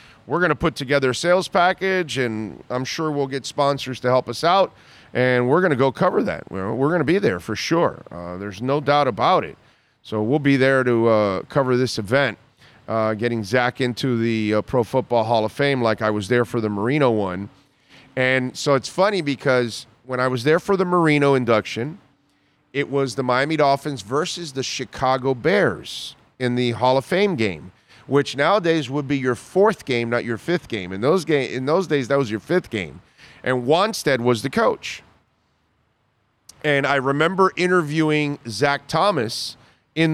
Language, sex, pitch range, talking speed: English, male, 115-145 Hz, 190 wpm